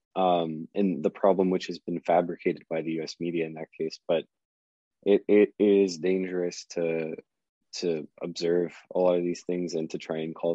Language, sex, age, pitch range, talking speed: English, male, 20-39, 85-95 Hz, 190 wpm